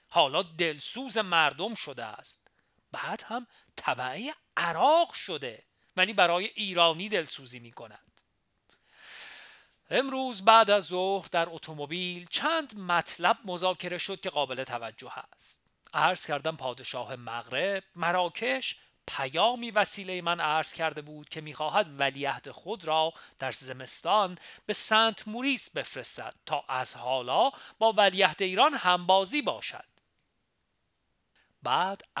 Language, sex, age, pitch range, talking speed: Persian, male, 40-59, 135-195 Hz, 115 wpm